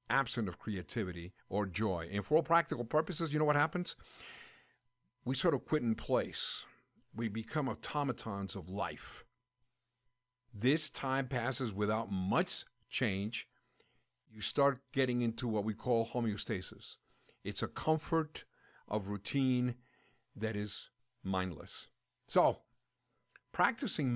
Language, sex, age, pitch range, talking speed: English, male, 50-69, 110-145 Hz, 120 wpm